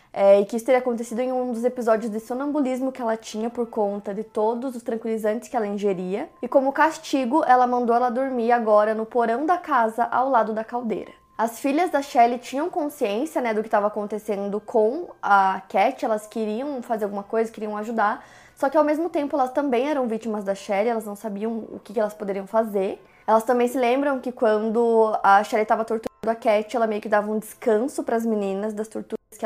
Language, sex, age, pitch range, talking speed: Portuguese, female, 20-39, 220-265 Hz, 210 wpm